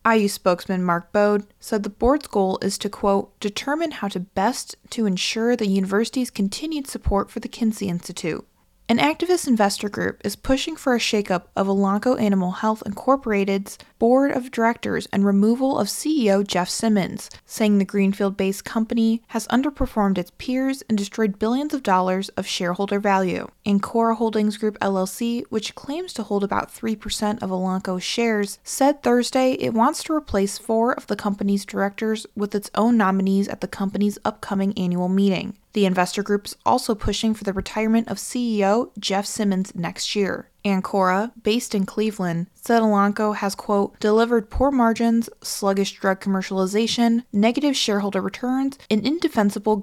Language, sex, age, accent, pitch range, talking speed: English, female, 20-39, American, 195-230 Hz, 160 wpm